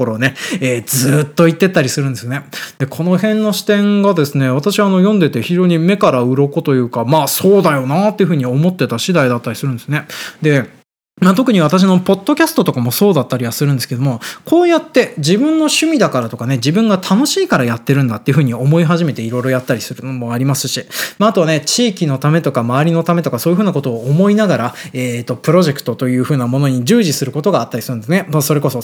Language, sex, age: Japanese, male, 20-39